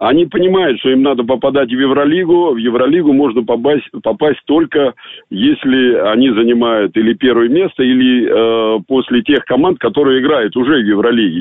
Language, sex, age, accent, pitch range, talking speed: Russian, male, 50-69, native, 110-155 Hz, 160 wpm